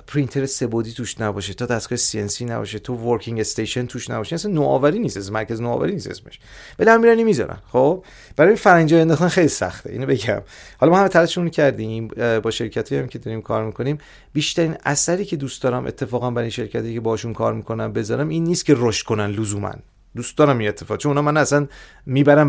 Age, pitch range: 30-49, 110-145 Hz